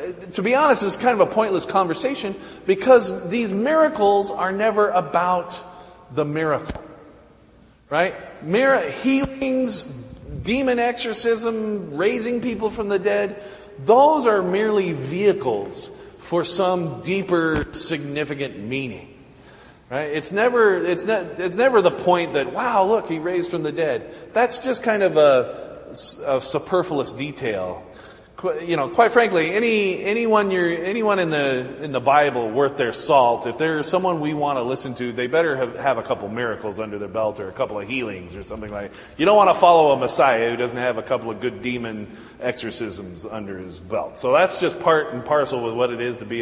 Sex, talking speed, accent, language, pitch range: male, 175 wpm, American, English, 130-205 Hz